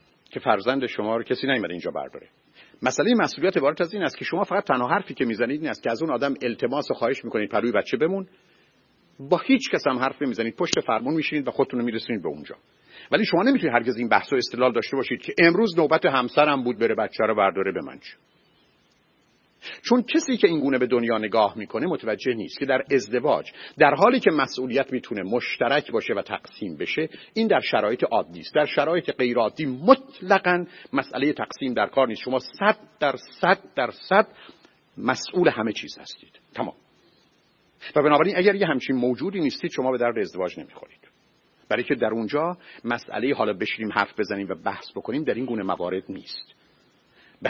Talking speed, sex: 185 wpm, male